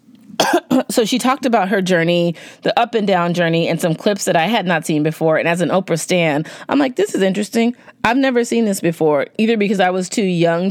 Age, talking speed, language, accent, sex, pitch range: 30-49, 230 wpm, English, American, female, 160-215 Hz